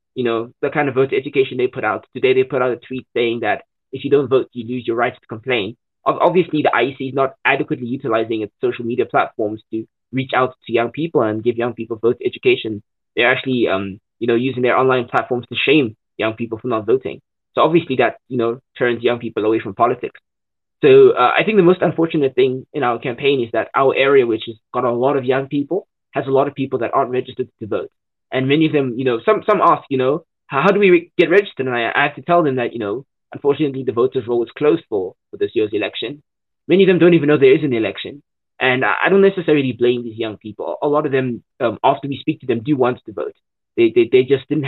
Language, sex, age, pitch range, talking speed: English, male, 20-39, 120-170 Hz, 255 wpm